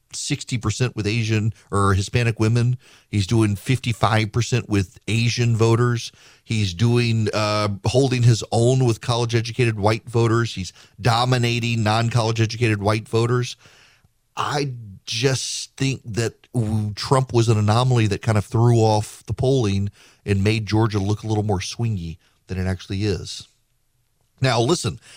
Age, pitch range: 40-59, 100-120 Hz